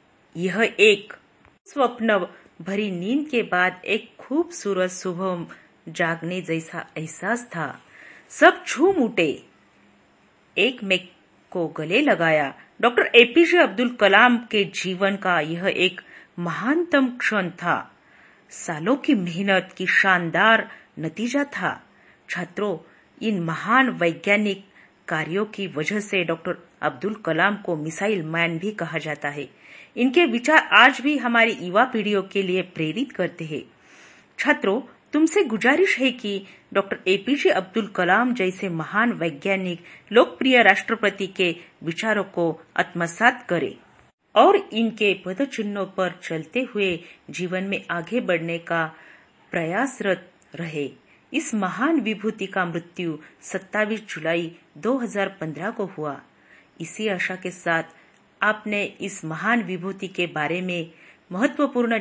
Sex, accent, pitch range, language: female, native, 170-225 Hz, Marathi